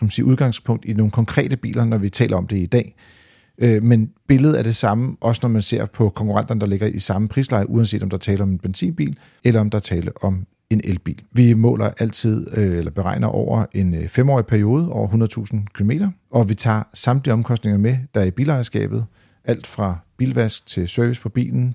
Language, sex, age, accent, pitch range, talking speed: Danish, male, 40-59, native, 100-125 Hz, 205 wpm